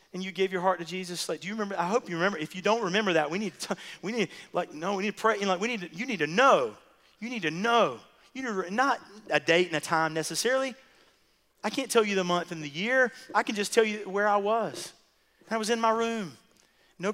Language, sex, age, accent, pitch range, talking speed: English, male, 40-59, American, 155-210 Hz, 265 wpm